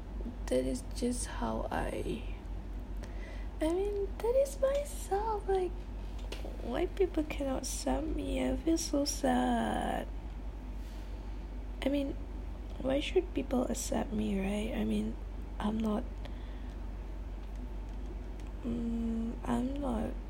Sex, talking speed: female, 105 wpm